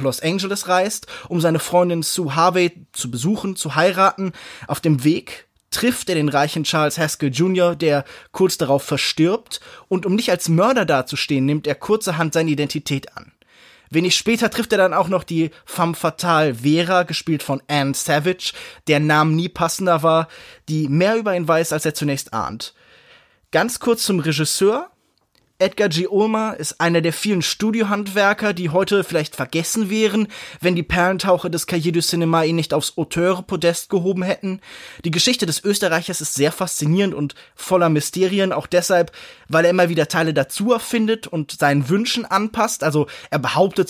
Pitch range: 150-195 Hz